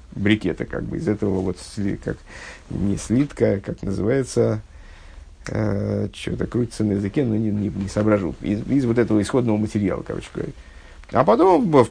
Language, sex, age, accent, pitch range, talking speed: Russian, male, 50-69, native, 100-120 Hz, 160 wpm